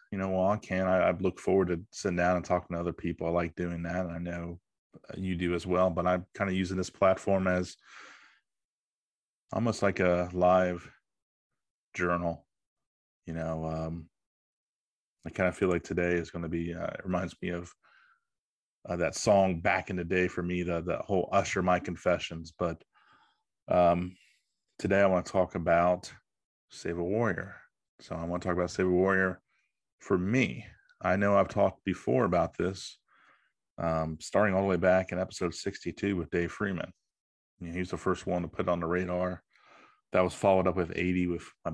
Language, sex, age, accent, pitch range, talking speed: English, male, 30-49, American, 85-95 Hz, 190 wpm